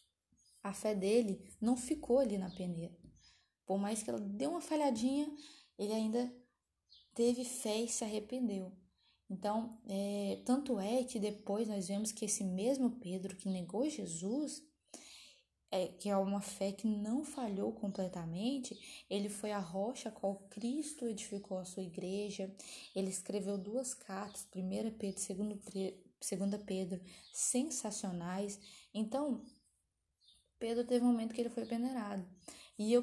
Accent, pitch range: Brazilian, 195-245 Hz